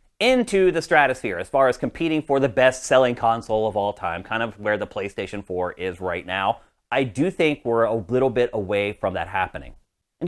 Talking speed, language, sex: 205 wpm, English, male